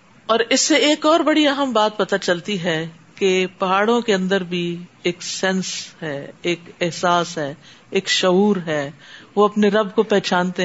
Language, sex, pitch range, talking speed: Urdu, female, 185-240 Hz, 170 wpm